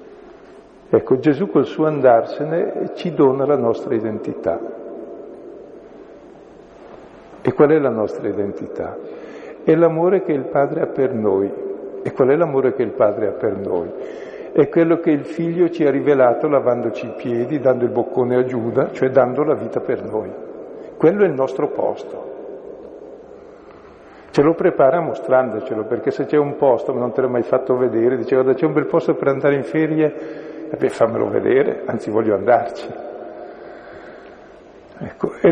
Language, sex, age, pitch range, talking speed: Italian, male, 50-69, 130-180 Hz, 160 wpm